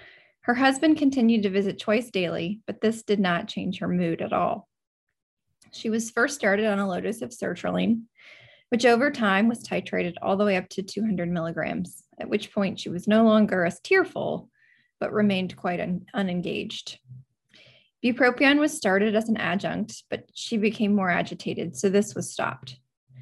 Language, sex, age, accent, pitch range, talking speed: English, female, 20-39, American, 190-230 Hz, 170 wpm